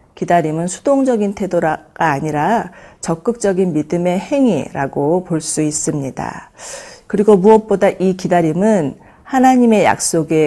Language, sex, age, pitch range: Korean, female, 40-59, 155-205 Hz